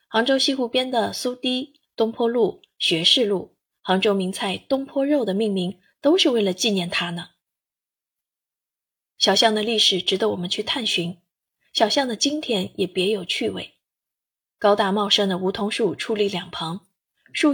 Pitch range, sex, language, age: 195-250 Hz, female, Chinese, 20-39